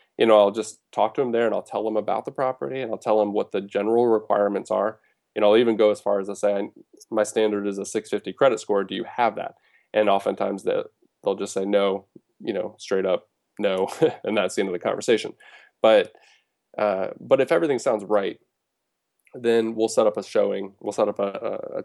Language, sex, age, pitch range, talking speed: English, male, 20-39, 100-115 Hz, 220 wpm